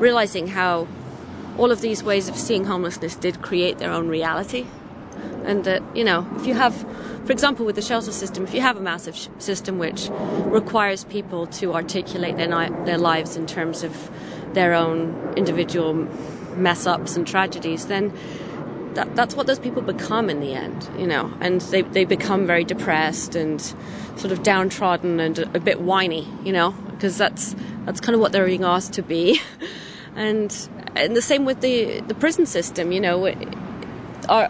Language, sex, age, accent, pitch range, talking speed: English, female, 30-49, British, 175-225 Hz, 180 wpm